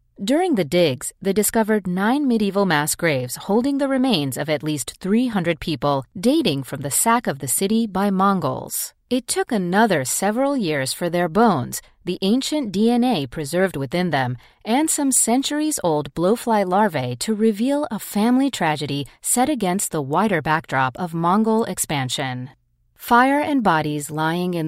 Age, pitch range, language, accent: 30-49, 150-230 Hz, English, American